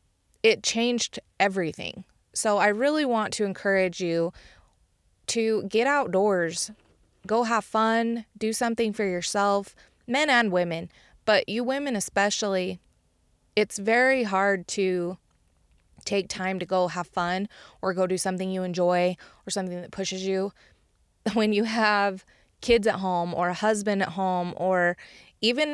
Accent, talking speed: American, 140 wpm